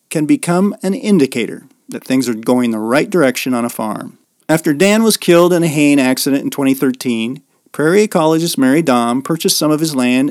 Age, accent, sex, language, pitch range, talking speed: 40-59, American, male, English, 125-160 Hz, 190 wpm